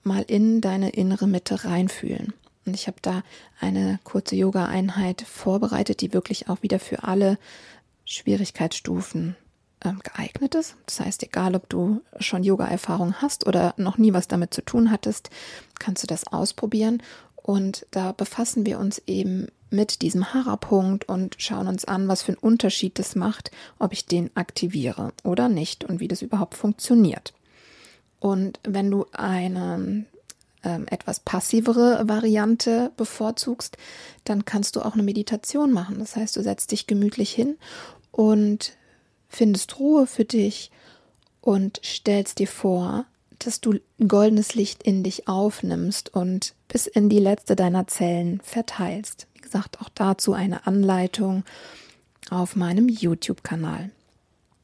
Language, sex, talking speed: German, female, 140 wpm